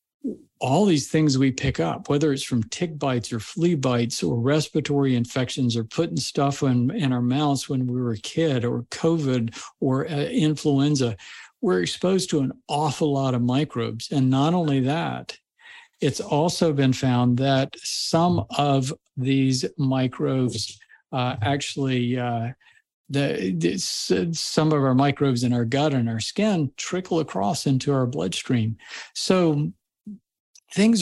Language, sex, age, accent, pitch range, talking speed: English, male, 50-69, American, 120-150 Hz, 150 wpm